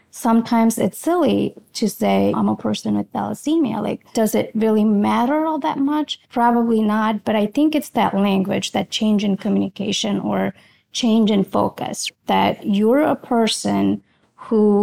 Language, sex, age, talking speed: English, female, 30-49, 160 wpm